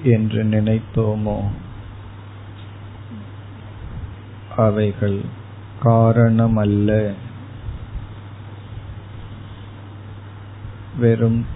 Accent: native